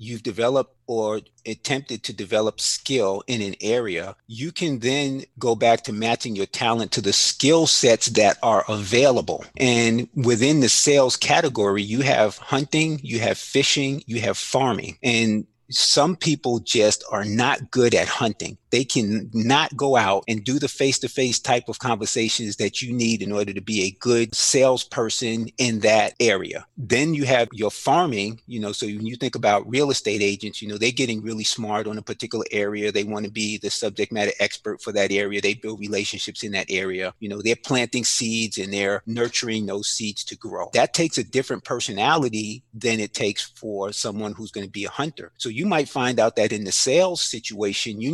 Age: 30-49